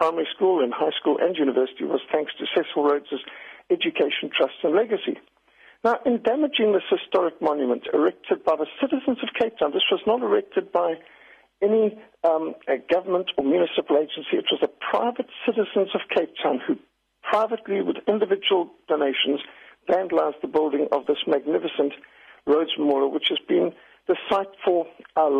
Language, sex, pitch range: English, male, 145-225 Hz